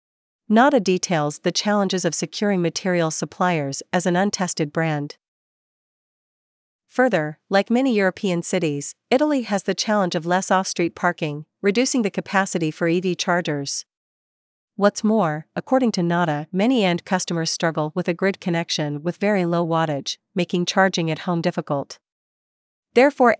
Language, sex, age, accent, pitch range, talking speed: English, female, 40-59, American, 170-200 Hz, 140 wpm